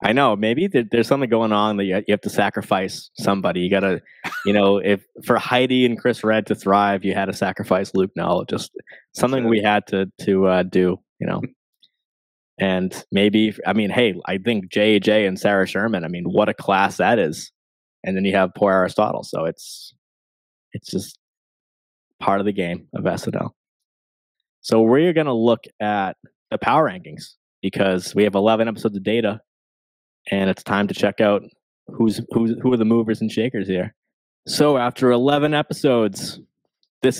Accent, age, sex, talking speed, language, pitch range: American, 20-39, male, 175 wpm, English, 100-120 Hz